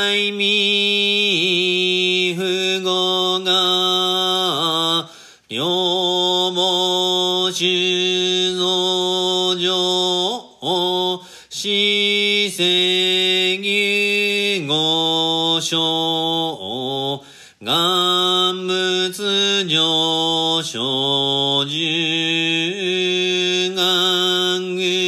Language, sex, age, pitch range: Japanese, male, 40-59, 175-185 Hz